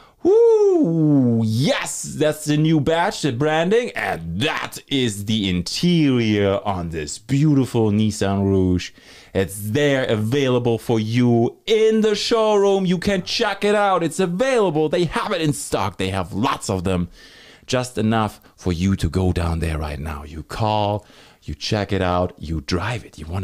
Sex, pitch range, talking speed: male, 90-140 Hz, 165 wpm